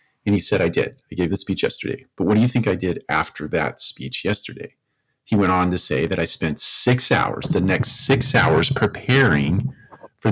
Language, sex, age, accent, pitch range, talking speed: English, male, 40-59, American, 90-120 Hz, 215 wpm